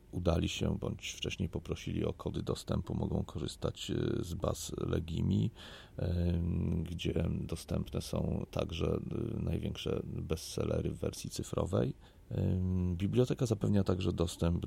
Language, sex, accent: Polish, male, native